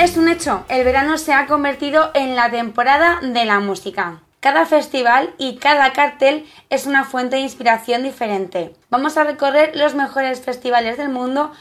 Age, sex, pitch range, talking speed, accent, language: 20-39, female, 225-275 Hz, 170 wpm, Spanish, Spanish